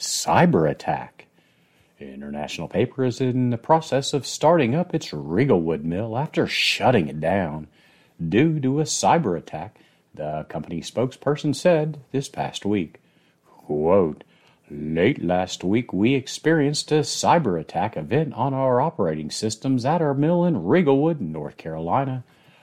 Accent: American